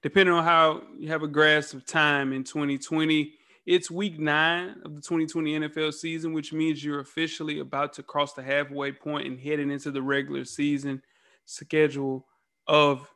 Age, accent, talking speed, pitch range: 20-39, American, 170 wpm, 145-185 Hz